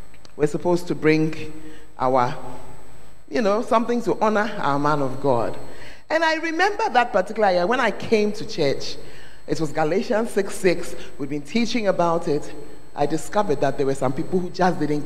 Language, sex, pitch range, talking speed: English, male, 140-205 Hz, 180 wpm